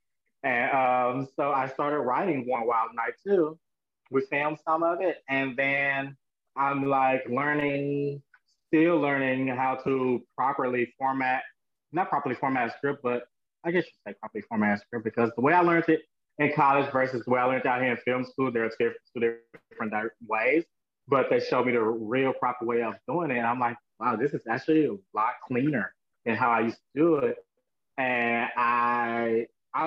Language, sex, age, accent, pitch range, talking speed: English, male, 20-39, American, 120-150 Hz, 190 wpm